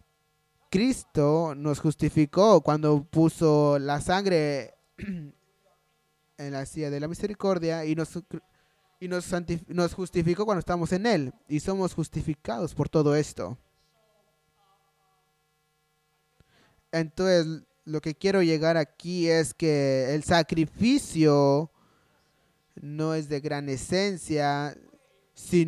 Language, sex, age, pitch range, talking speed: English, male, 20-39, 145-175 Hz, 105 wpm